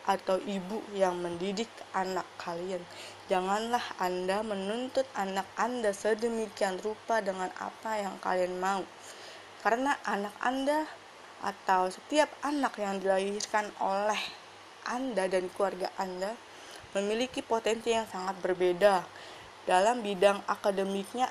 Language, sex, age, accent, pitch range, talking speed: Indonesian, female, 20-39, native, 190-225 Hz, 110 wpm